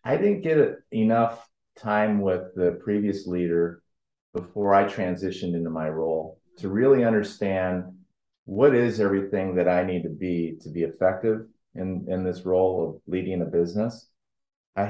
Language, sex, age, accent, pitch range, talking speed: English, male, 30-49, American, 85-105 Hz, 155 wpm